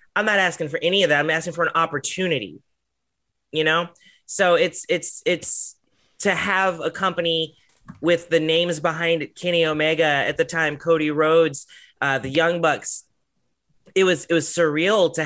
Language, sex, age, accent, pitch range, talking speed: English, male, 30-49, American, 155-185 Hz, 175 wpm